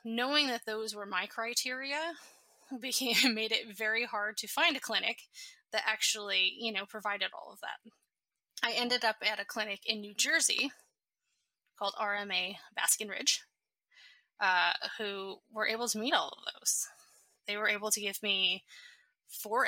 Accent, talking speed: American, 155 wpm